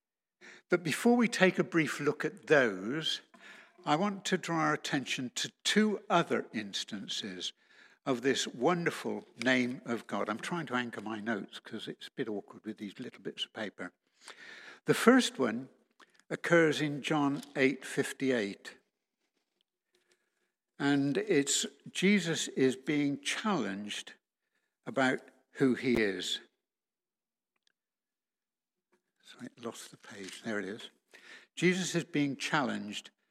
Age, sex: 60-79, male